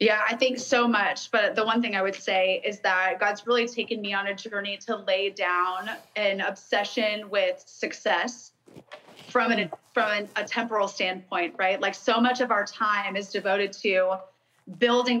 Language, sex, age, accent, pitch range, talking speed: English, female, 20-39, American, 195-230 Hz, 175 wpm